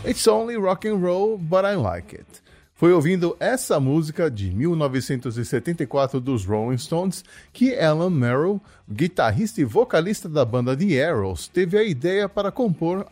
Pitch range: 135-195 Hz